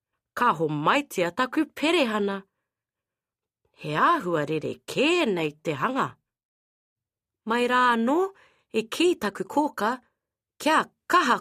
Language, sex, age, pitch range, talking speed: English, female, 30-49, 185-295 Hz, 105 wpm